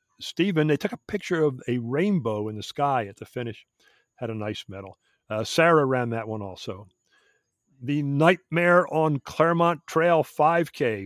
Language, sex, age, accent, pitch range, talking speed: English, male, 50-69, American, 120-175 Hz, 165 wpm